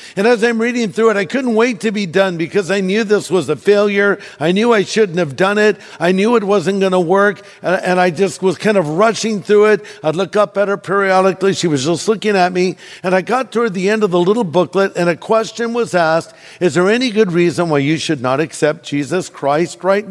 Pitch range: 165-220 Hz